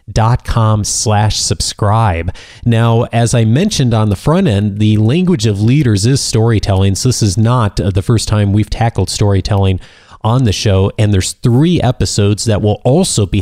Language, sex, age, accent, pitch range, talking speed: English, male, 30-49, American, 100-125 Hz, 175 wpm